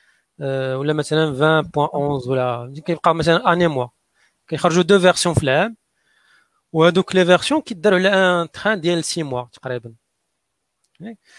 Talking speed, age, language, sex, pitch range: 130 wpm, 40-59, Arabic, male, 140-175 Hz